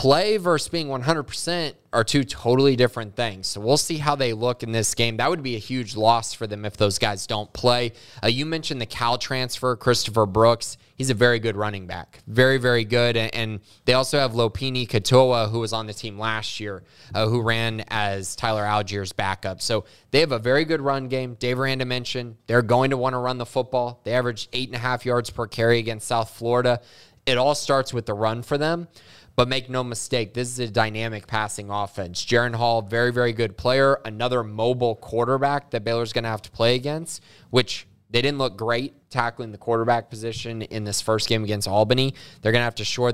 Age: 20-39